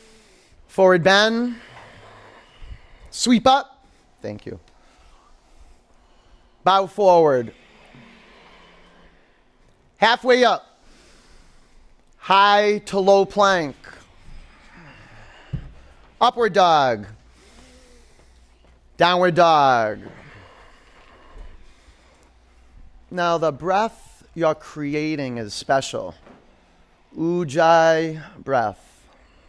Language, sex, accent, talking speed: English, male, American, 55 wpm